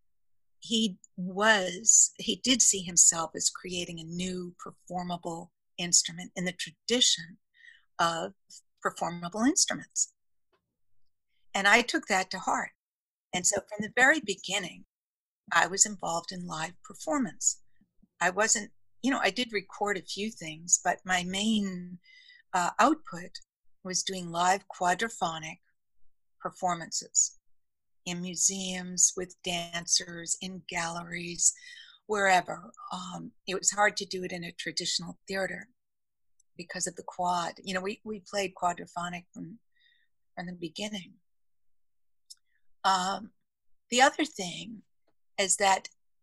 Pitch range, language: 175-215 Hz, English